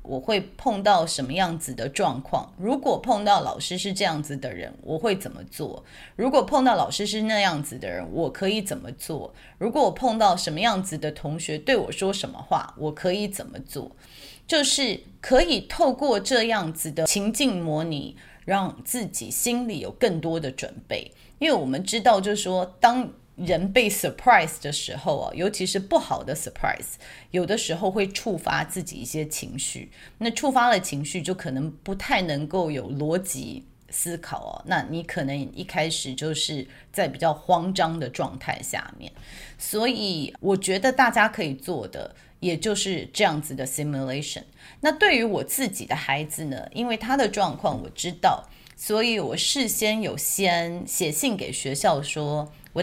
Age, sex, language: 30-49, female, Chinese